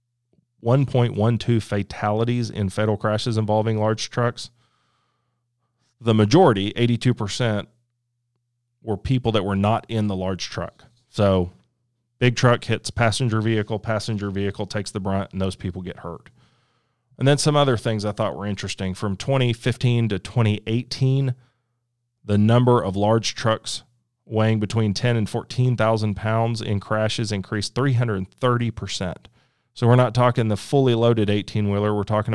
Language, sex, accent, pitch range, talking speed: English, male, American, 105-120 Hz, 135 wpm